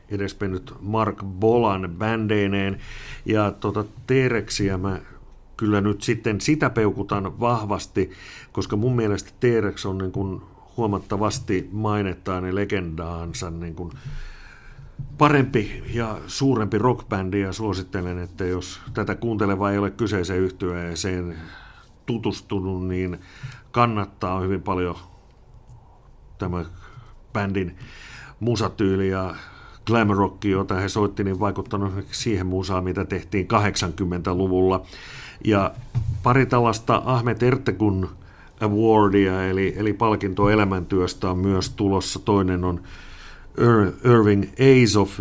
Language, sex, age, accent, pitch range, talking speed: Finnish, male, 50-69, native, 95-110 Hz, 100 wpm